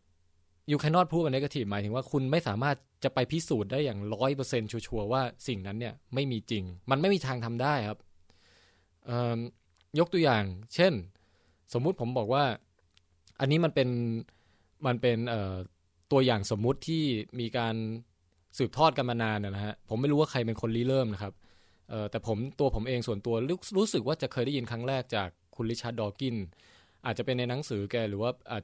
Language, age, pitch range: English, 20-39, 100-135 Hz